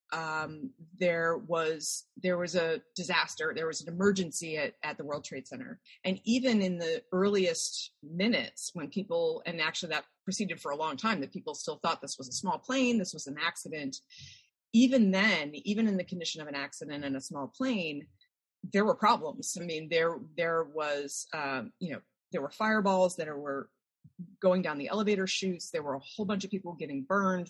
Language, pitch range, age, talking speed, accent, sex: English, 160-220 Hz, 30-49, 195 wpm, American, female